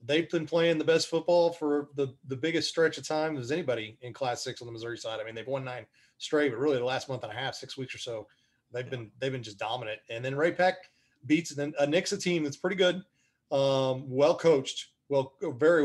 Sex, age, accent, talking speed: male, 30-49, American, 240 wpm